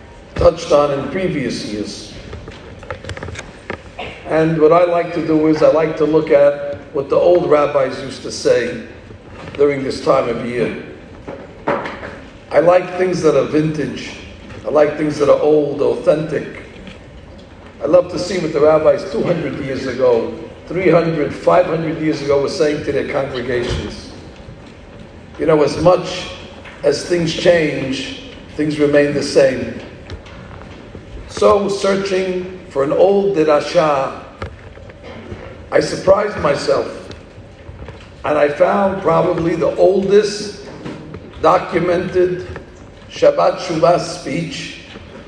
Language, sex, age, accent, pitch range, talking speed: English, male, 50-69, American, 135-180 Hz, 120 wpm